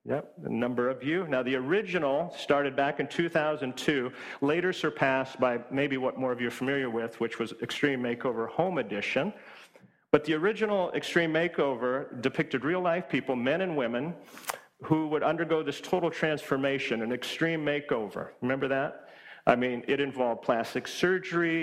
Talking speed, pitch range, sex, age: 160 wpm, 125-165 Hz, male, 40-59